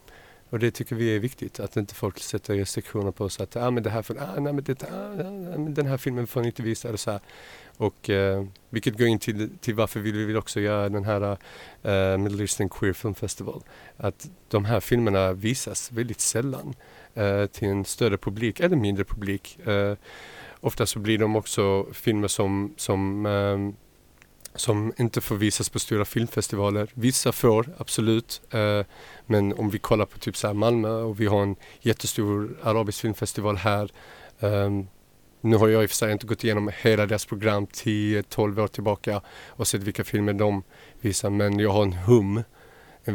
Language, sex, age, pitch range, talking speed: Swedish, male, 30-49, 100-115 Hz, 185 wpm